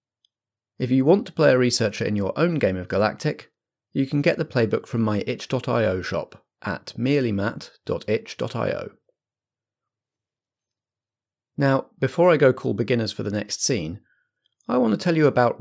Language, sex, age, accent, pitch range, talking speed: English, male, 30-49, British, 105-135 Hz, 155 wpm